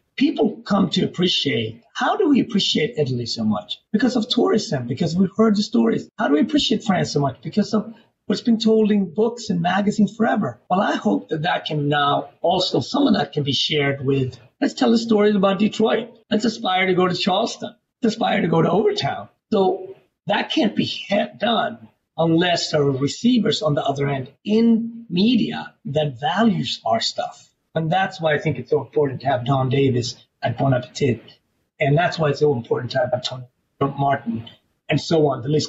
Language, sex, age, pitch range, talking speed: English, male, 40-59, 140-210 Hz, 200 wpm